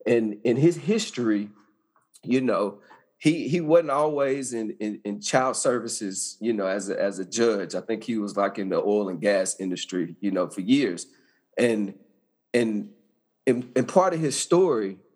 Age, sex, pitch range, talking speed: 40-59, male, 105-145 Hz, 180 wpm